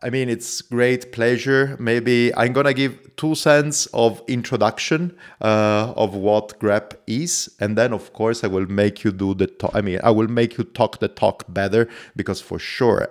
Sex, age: male, 30-49